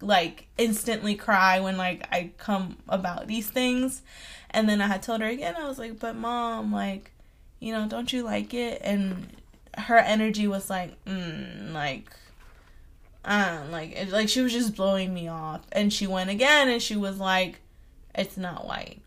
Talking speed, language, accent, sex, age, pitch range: 180 wpm, English, American, female, 20-39, 190-230 Hz